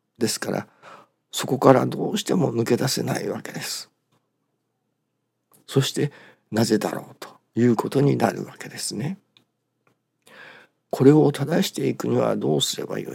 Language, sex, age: Japanese, male, 50-69